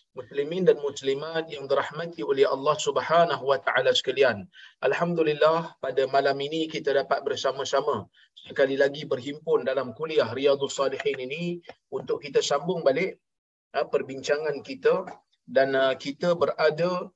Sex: male